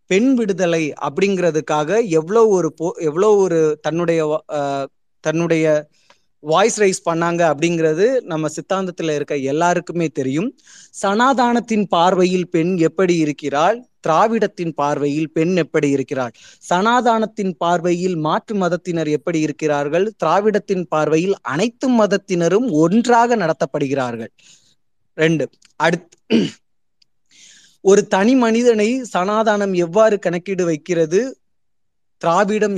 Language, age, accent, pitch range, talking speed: Tamil, 20-39, native, 155-205 Hz, 85 wpm